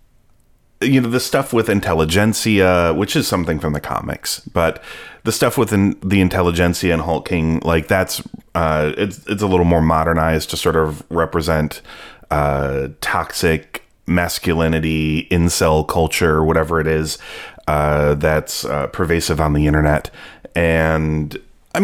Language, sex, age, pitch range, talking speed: English, male, 30-49, 80-95 Hz, 140 wpm